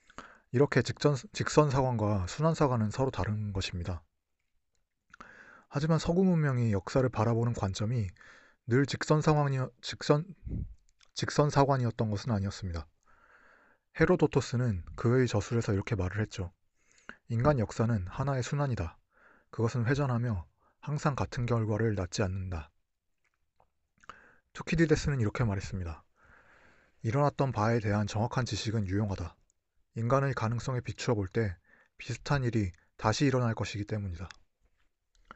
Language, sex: Korean, male